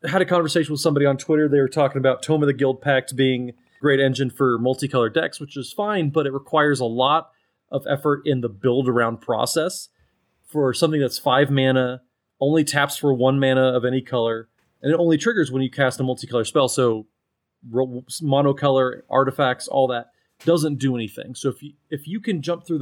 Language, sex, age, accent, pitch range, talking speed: English, male, 30-49, American, 125-150 Hz, 200 wpm